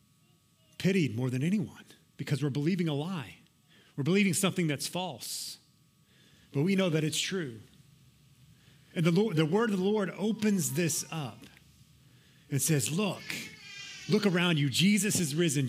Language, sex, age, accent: English, male, 30-49, American